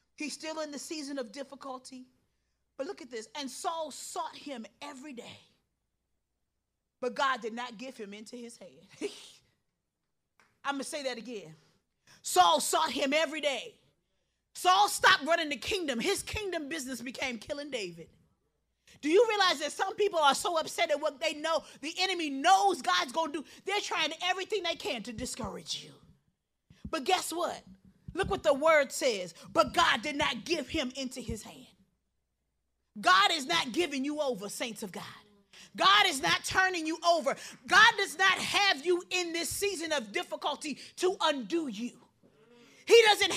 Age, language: 30-49, English